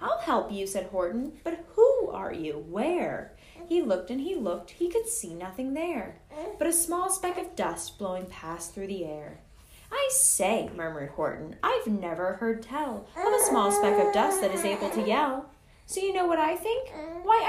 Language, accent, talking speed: English, American, 195 wpm